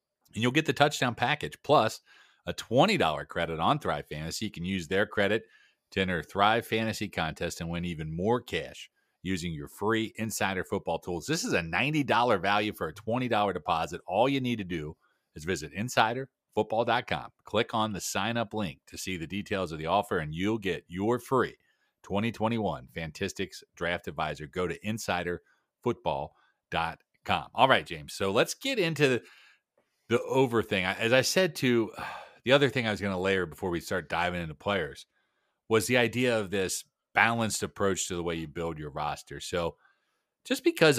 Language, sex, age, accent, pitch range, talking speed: English, male, 40-59, American, 85-115 Hz, 180 wpm